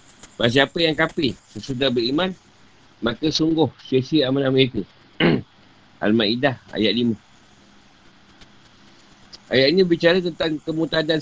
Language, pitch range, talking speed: Malay, 120-150 Hz, 100 wpm